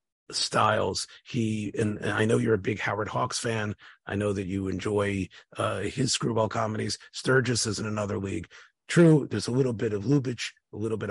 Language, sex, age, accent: English, male, 40-59, American